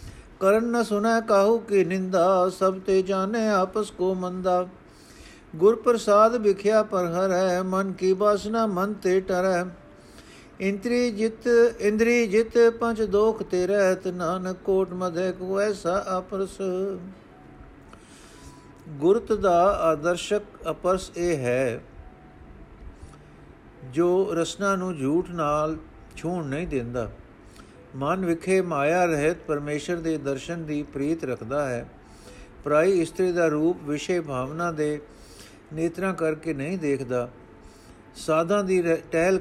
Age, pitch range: 50-69, 150-190 Hz